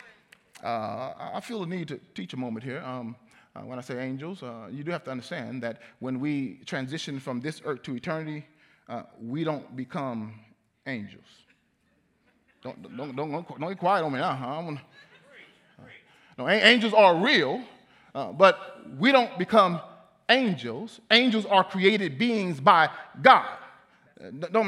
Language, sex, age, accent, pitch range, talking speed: English, male, 30-49, American, 170-235 Hz, 160 wpm